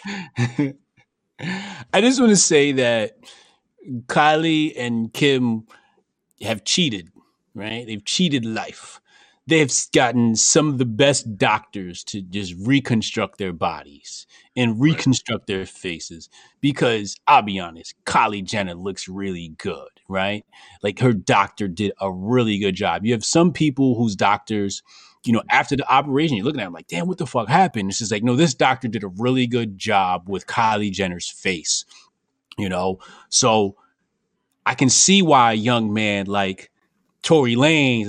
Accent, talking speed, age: American, 155 wpm, 30-49